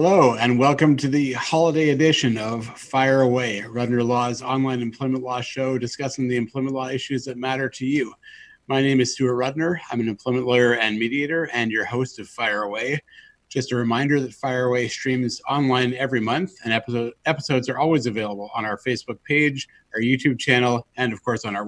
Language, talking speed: English, 190 wpm